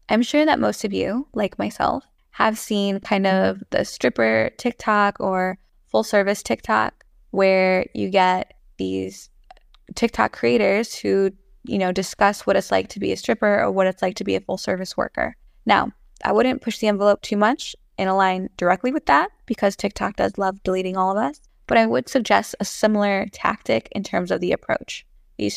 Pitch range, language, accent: 190-225 Hz, English, American